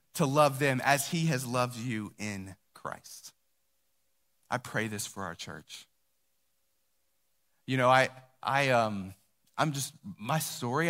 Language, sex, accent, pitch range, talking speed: English, male, American, 100-150 Hz, 140 wpm